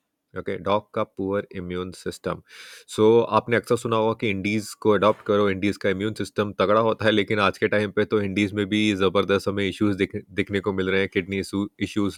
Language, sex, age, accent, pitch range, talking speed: Hindi, male, 30-49, native, 100-120 Hz, 205 wpm